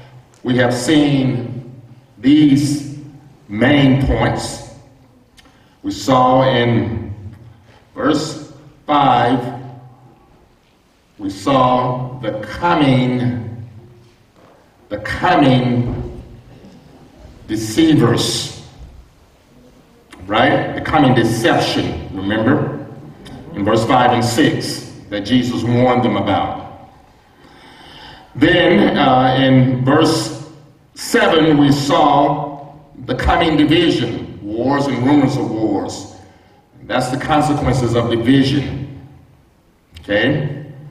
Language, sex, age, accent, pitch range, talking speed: English, male, 50-69, American, 115-145 Hz, 80 wpm